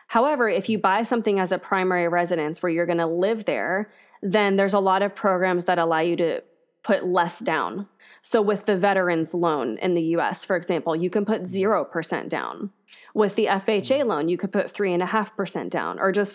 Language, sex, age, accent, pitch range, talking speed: English, female, 20-39, American, 170-210 Hz, 200 wpm